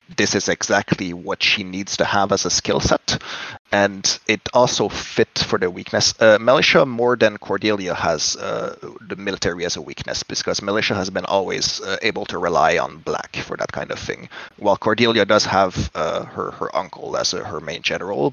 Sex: male